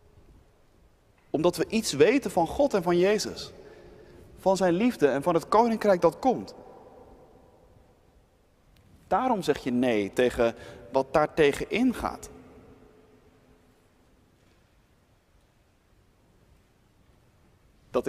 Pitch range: 125-195 Hz